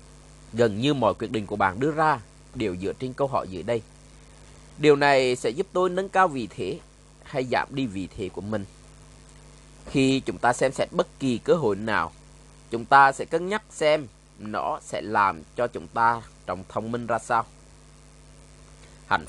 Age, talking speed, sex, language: 20-39, 185 wpm, male, Vietnamese